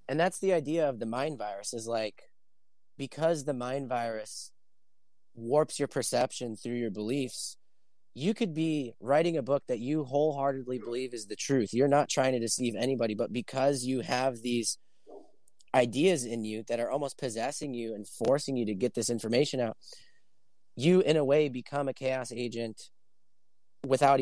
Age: 30-49